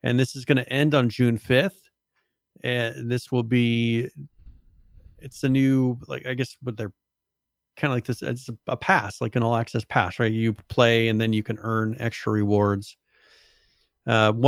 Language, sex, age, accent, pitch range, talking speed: English, male, 40-59, American, 110-125 Hz, 180 wpm